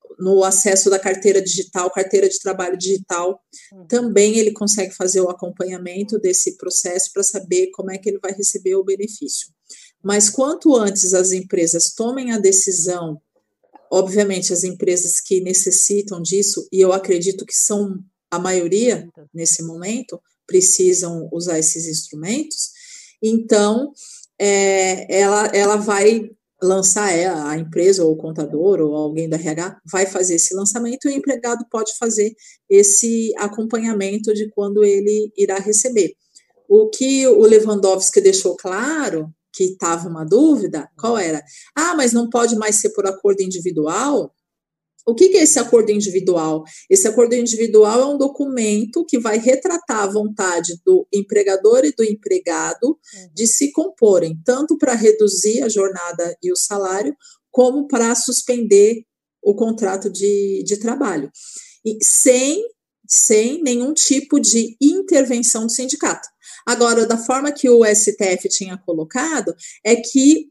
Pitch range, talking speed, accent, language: 185-245 Hz, 140 wpm, Brazilian, Portuguese